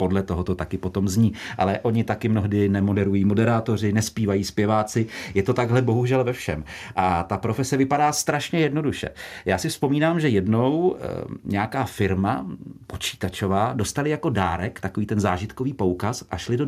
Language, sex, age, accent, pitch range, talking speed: Czech, male, 40-59, native, 100-130 Hz, 160 wpm